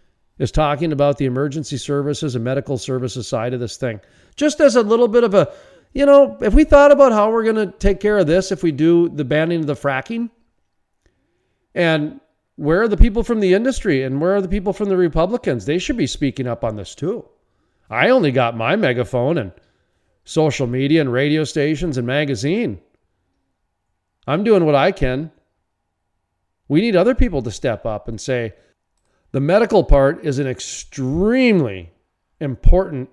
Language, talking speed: English, 180 wpm